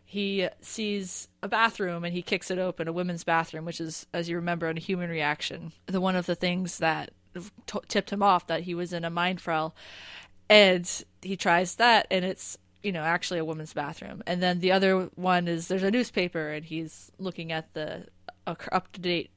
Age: 20-39